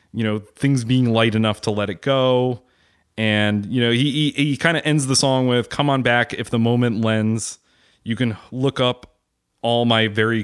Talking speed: 200 wpm